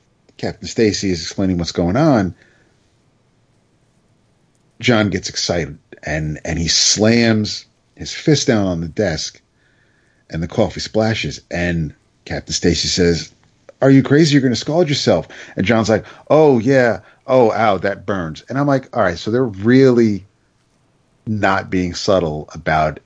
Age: 40-59